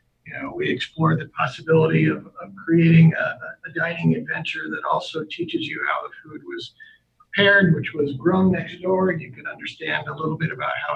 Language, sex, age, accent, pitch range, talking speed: English, male, 50-69, American, 160-205 Hz, 195 wpm